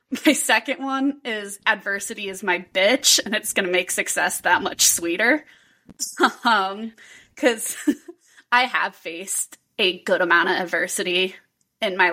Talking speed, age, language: 140 wpm, 20-39, English